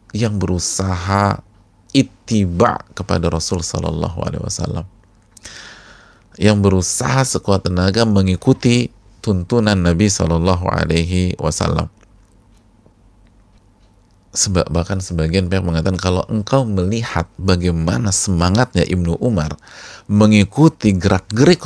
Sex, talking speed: male, 90 wpm